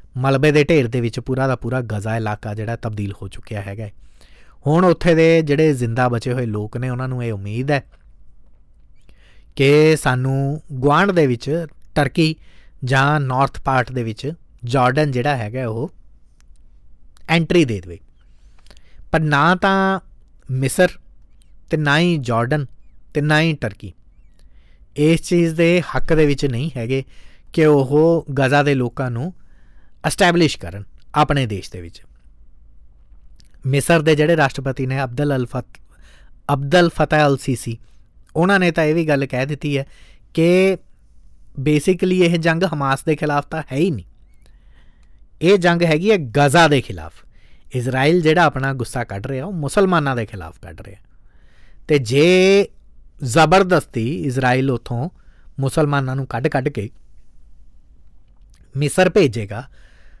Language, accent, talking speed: English, Indian, 90 wpm